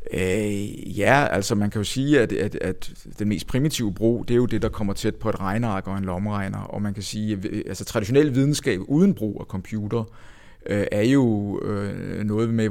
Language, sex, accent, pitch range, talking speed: Danish, male, native, 100-120 Hz, 215 wpm